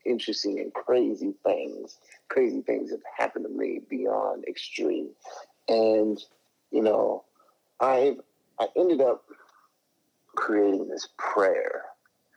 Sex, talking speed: male, 105 wpm